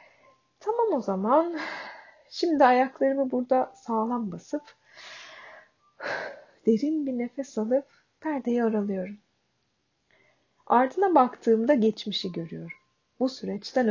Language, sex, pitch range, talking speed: Turkish, female, 210-300 Hz, 85 wpm